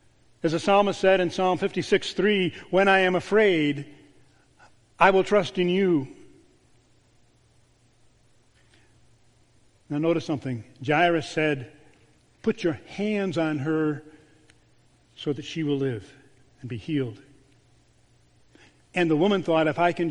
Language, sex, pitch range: English, male, 145-190 Hz